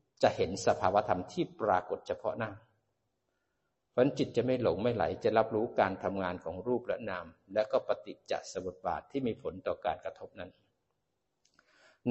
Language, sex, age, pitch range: Thai, male, 60-79, 105-140 Hz